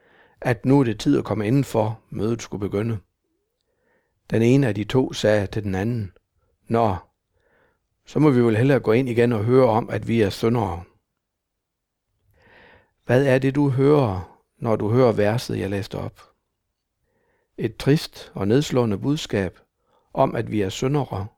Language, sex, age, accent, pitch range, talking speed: Danish, male, 60-79, native, 105-135 Hz, 165 wpm